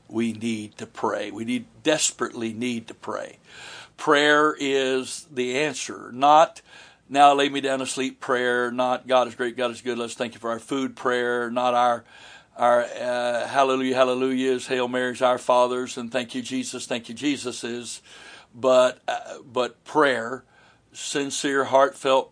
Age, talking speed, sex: 60-79, 160 wpm, male